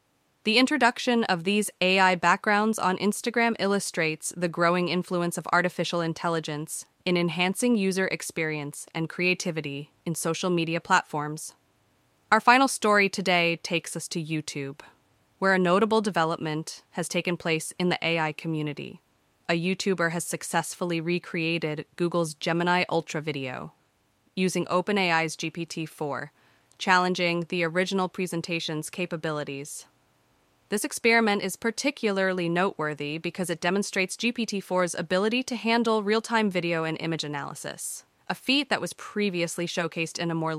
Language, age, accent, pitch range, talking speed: English, 20-39, American, 160-190 Hz, 130 wpm